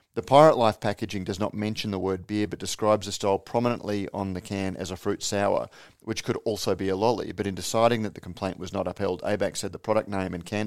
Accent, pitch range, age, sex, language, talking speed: Australian, 95-110 Hz, 40-59, male, English, 245 wpm